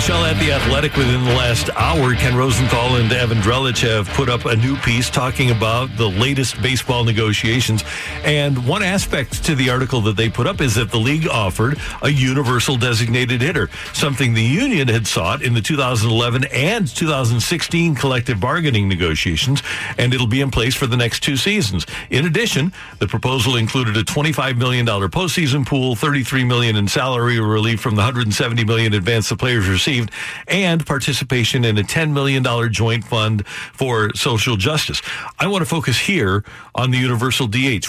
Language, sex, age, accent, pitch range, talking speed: English, male, 60-79, American, 115-140 Hz, 175 wpm